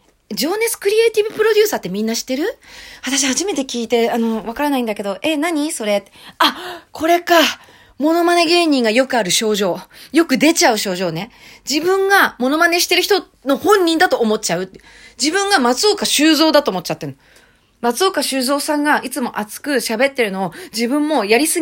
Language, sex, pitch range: Japanese, female, 195-275 Hz